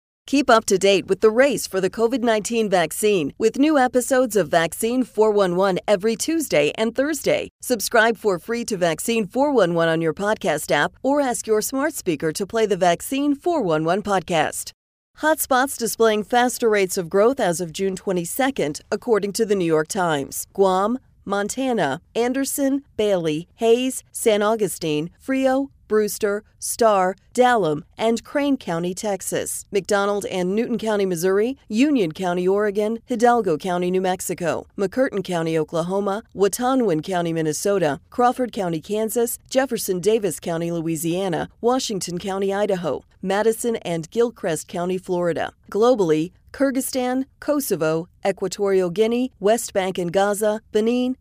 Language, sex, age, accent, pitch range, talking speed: English, female, 40-59, American, 185-240 Hz, 135 wpm